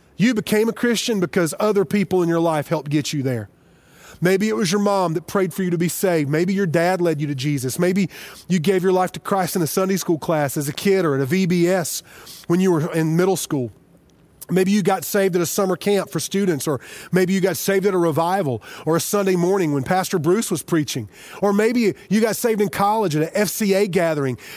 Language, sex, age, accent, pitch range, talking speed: English, male, 30-49, American, 165-215 Hz, 235 wpm